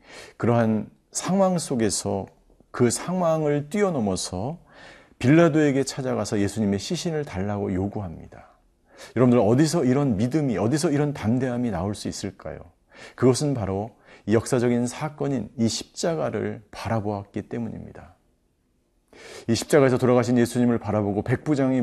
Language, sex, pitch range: Korean, male, 105-140 Hz